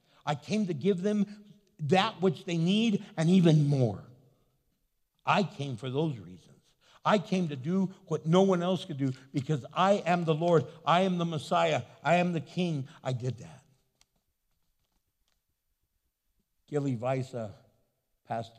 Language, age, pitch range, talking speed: English, 60-79, 110-160 Hz, 150 wpm